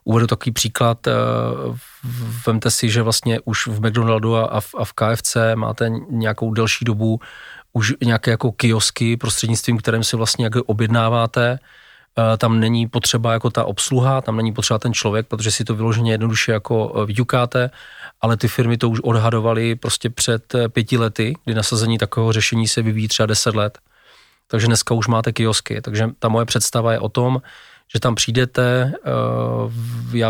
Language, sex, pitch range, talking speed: Czech, male, 110-115 Hz, 155 wpm